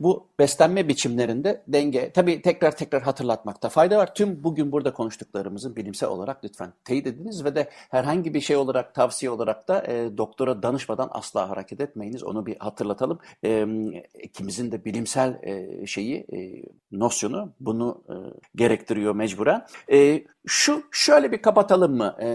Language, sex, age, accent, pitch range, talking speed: Turkish, male, 60-79, native, 130-190 Hz, 150 wpm